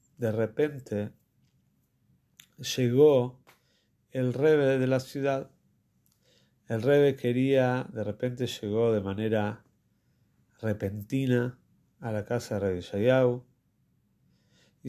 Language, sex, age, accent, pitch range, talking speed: Spanish, male, 40-59, Argentinian, 105-130 Hz, 95 wpm